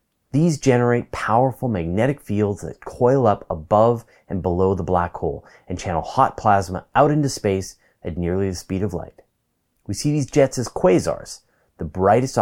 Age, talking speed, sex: 30-49, 170 wpm, male